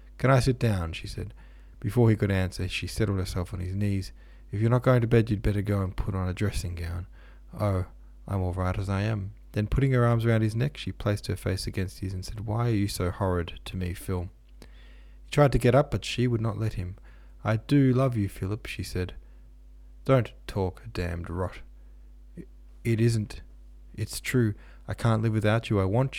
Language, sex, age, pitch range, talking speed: English, male, 20-39, 90-115 Hz, 220 wpm